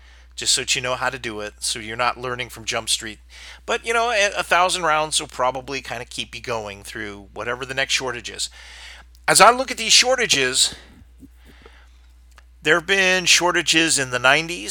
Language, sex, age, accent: English, male, 40-59, American